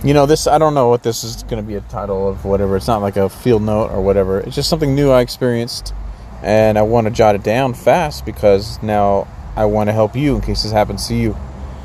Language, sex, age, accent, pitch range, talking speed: English, male, 30-49, American, 100-125 Hz, 260 wpm